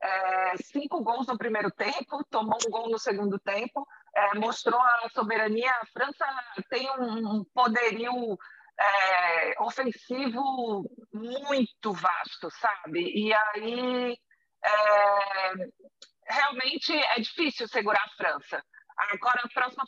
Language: Portuguese